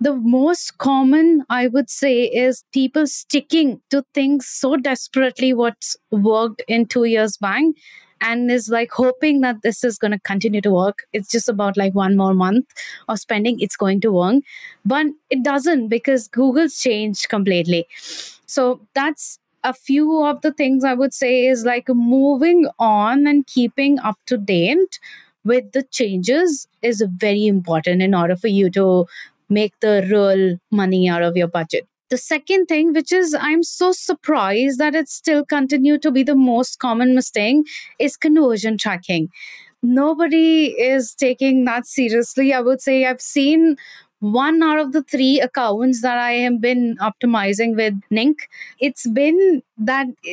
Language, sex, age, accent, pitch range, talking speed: English, female, 20-39, Indian, 225-290 Hz, 160 wpm